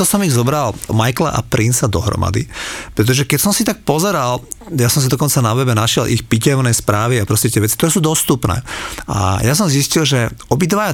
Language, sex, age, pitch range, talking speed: Slovak, male, 40-59, 110-140 Hz, 195 wpm